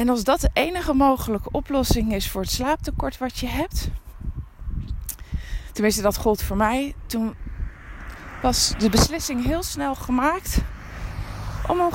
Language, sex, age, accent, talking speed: Dutch, female, 20-39, Dutch, 140 wpm